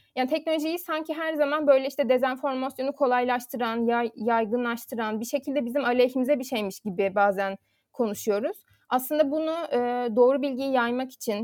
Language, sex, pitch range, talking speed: Turkish, female, 240-285 Hz, 140 wpm